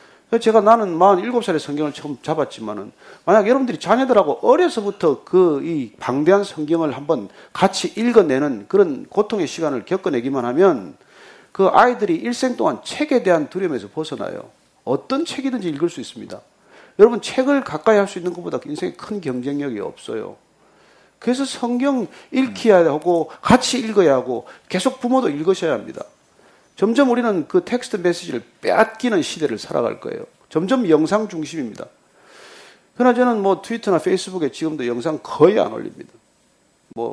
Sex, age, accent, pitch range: male, 40-59, native, 180-270 Hz